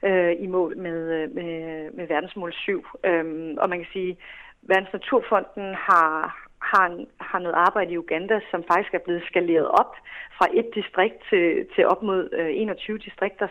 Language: Danish